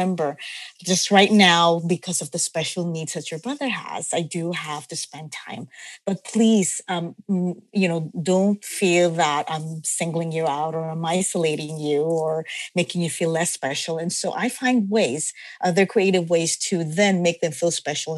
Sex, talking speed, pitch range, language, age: female, 180 wpm, 165-225 Hz, English, 30-49